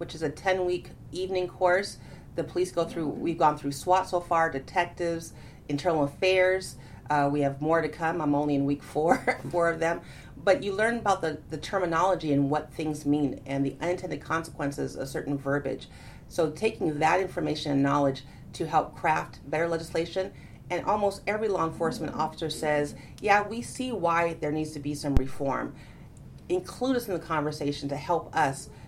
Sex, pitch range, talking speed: female, 140-175 Hz, 180 wpm